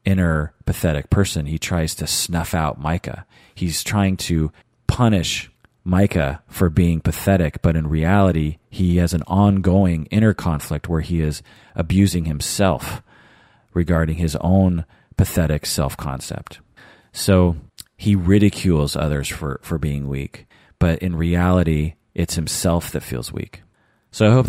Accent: American